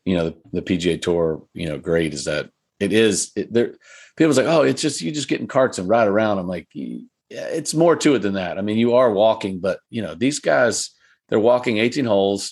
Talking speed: 235 wpm